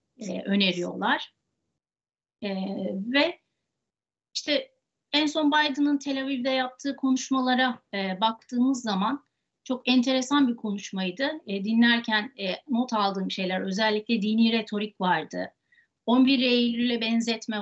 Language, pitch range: Turkish, 205-270 Hz